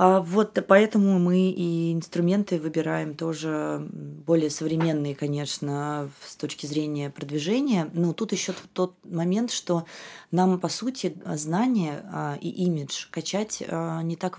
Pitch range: 150-185 Hz